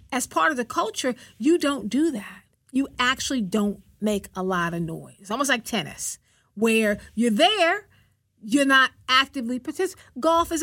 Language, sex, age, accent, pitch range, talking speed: English, female, 40-59, American, 215-295 Hz, 170 wpm